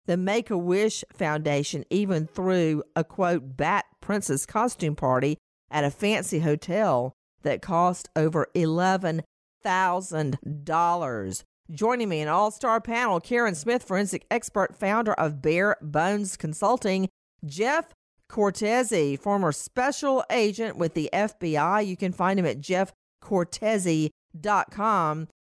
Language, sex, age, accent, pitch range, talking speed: English, female, 50-69, American, 155-205 Hz, 110 wpm